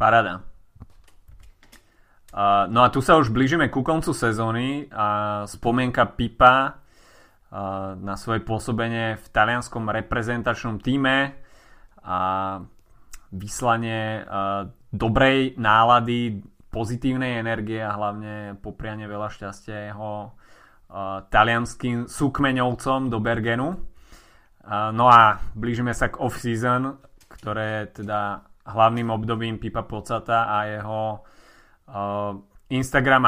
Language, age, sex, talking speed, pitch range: Slovak, 20-39, male, 100 wpm, 105-125 Hz